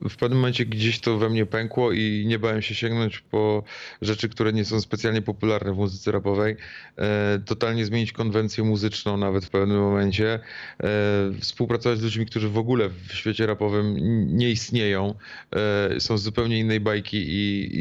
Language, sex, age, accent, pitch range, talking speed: Polish, male, 30-49, native, 110-120 Hz, 175 wpm